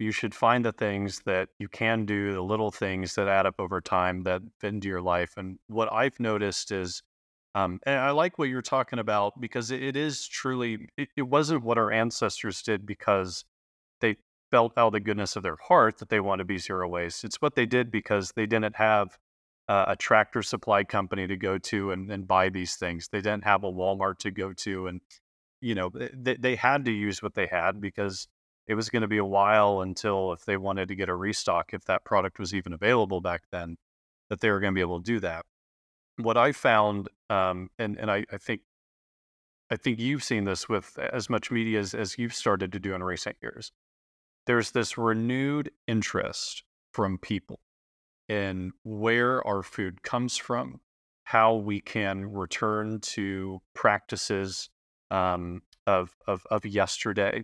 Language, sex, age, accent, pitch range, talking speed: English, male, 30-49, American, 95-115 Hz, 195 wpm